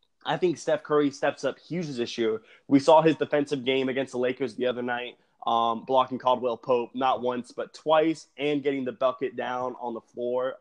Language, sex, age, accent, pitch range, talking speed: English, male, 20-39, American, 115-145 Hz, 205 wpm